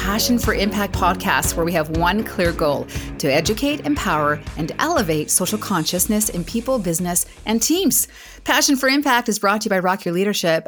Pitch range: 170-255 Hz